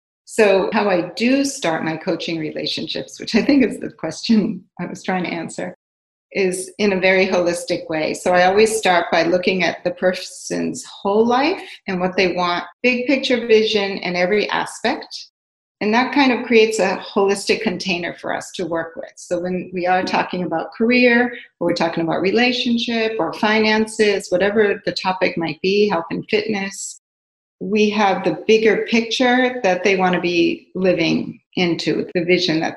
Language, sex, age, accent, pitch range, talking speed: English, female, 40-59, American, 170-215 Hz, 175 wpm